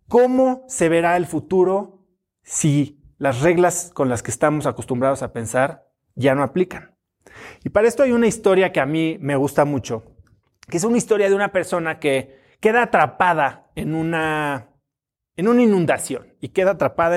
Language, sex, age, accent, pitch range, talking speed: Spanish, male, 30-49, Mexican, 140-200 Hz, 165 wpm